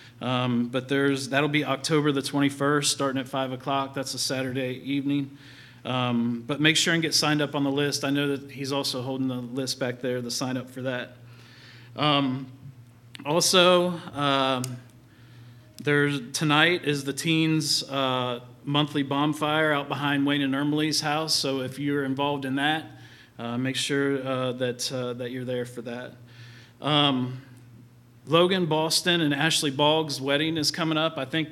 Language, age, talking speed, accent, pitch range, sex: English, 40-59, 170 wpm, American, 125-145 Hz, male